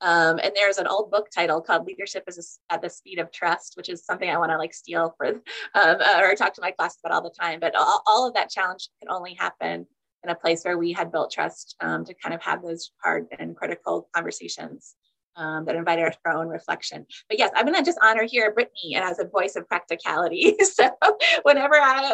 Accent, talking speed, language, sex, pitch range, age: American, 230 wpm, English, female, 170-255 Hz, 20-39